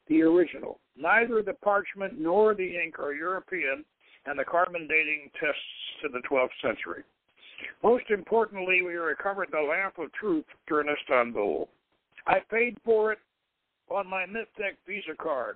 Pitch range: 160-215 Hz